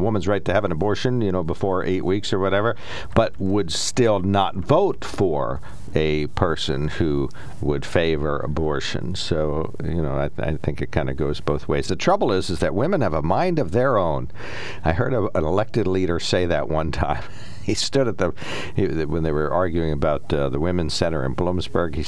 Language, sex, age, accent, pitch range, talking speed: English, male, 60-79, American, 75-95 Hz, 200 wpm